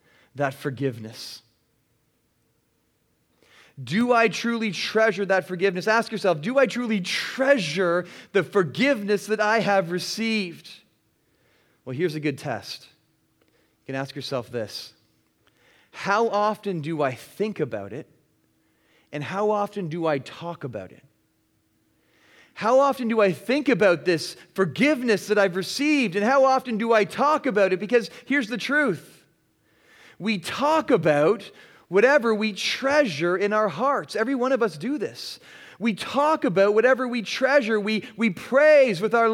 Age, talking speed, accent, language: 30-49, 145 wpm, American, English